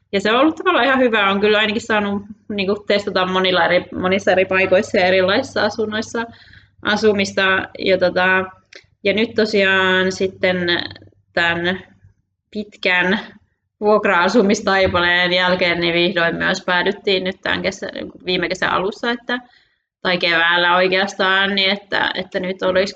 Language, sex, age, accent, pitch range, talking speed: Finnish, female, 20-39, native, 180-210 Hz, 135 wpm